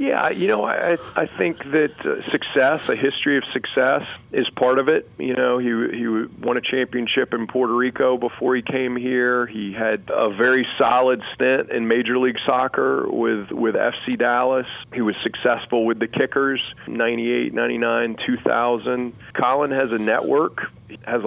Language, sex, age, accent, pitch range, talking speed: English, male, 40-59, American, 110-130 Hz, 165 wpm